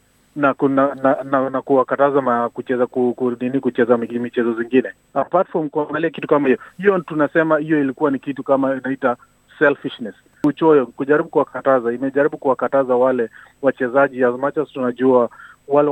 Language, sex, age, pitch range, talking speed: Swahili, male, 30-49, 125-150 Hz, 160 wpm